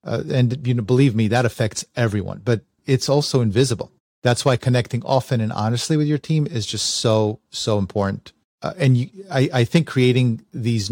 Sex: male